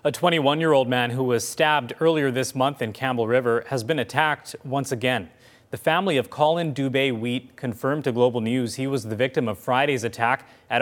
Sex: male